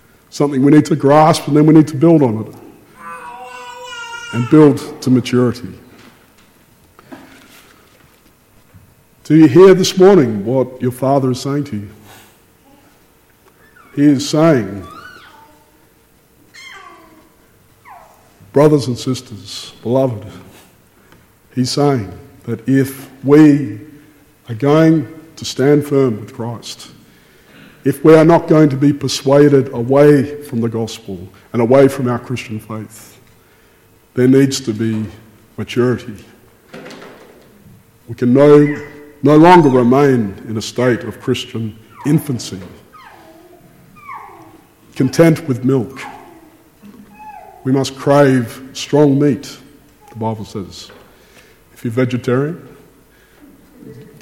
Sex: male